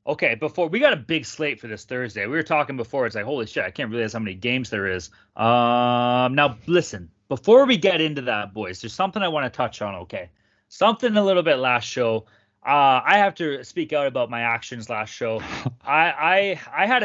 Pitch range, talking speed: 110-145 Hz, 225 wpm